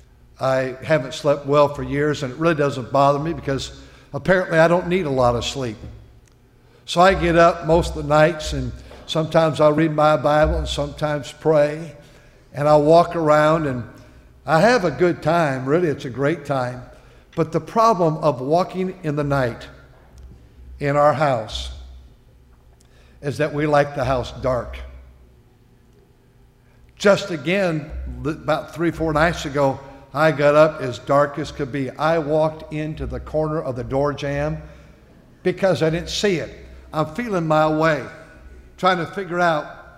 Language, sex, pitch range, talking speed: English, male, 130-165 Hz, 165 wpm